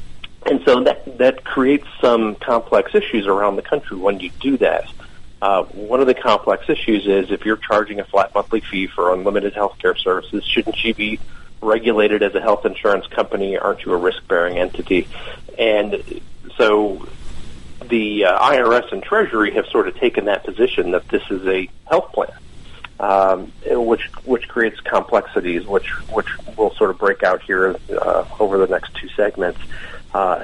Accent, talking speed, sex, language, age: American, 170 wpm, male, English, 40-59